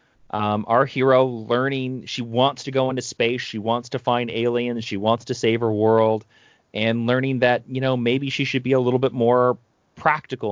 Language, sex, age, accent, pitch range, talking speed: English, male, 30-49, American, 110-135 Hz, 195 wpm